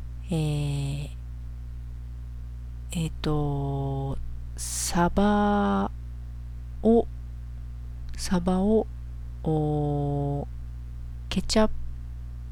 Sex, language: female, Japanese